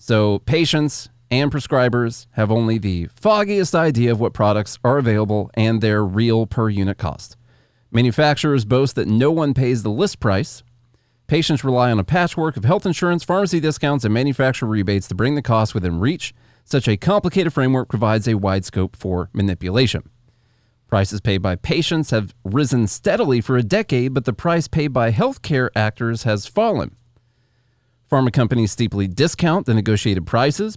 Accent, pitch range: American, 110-140 Hz